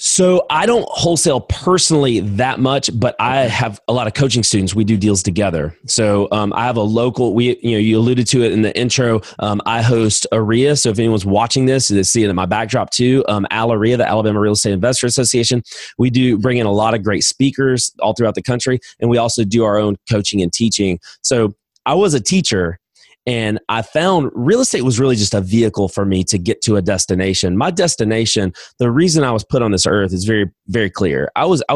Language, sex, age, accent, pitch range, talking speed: English, male, 30-49, American, 105-130 Hz, 230 wpm